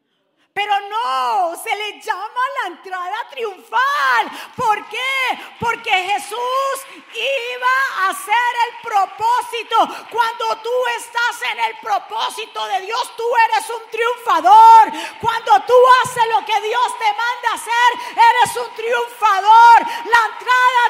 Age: 40-59